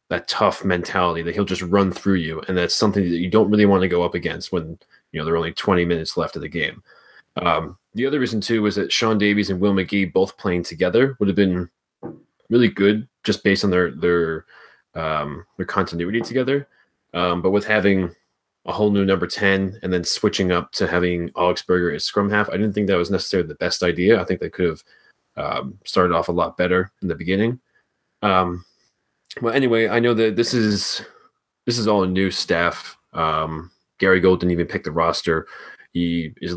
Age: 20-39